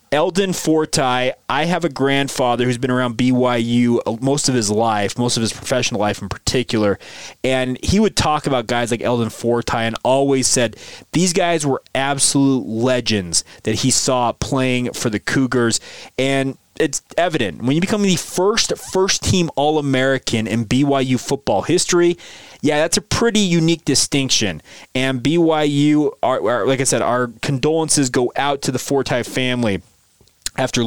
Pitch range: 120-150 Hz